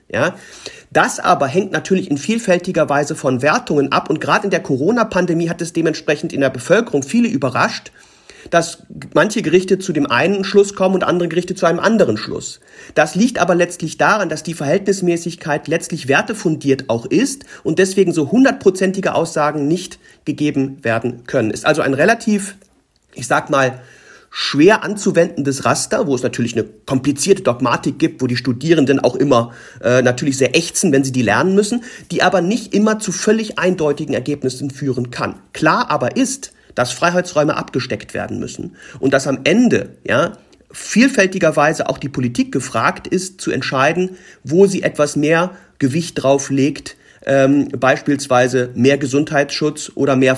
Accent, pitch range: German, 135-185 Hz